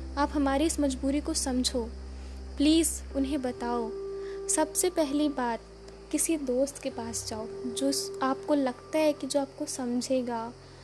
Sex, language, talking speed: female, Hindi, 140 wpm